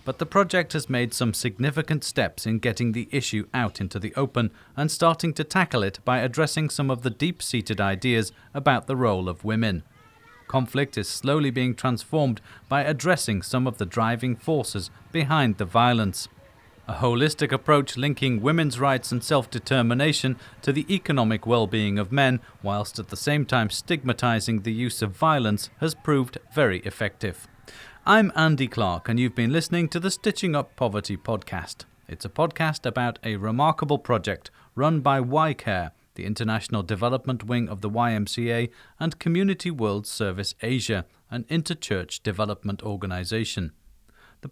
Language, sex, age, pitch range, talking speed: English, male, 40-59, 105-145 Hz, 155 wpm